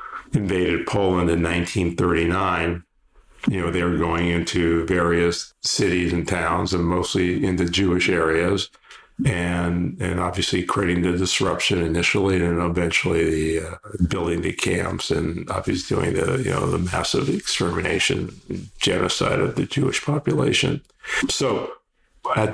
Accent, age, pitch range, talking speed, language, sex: American, 50-69, 85-95 Hz, 130 wpm, English, male